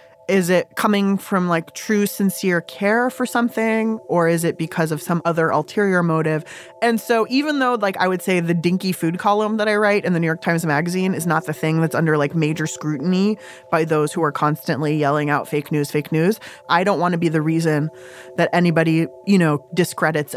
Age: 20-39